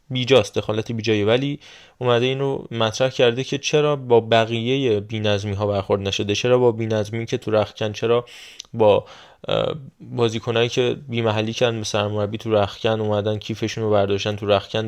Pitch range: 110-135 Hz